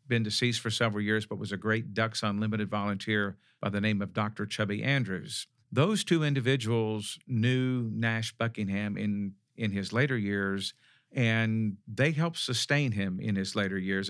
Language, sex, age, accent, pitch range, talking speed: English, male, 50-69, American, 105-125 Hz, 165 wpm